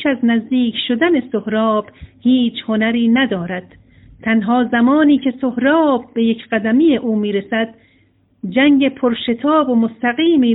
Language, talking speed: Persian, 115 wpm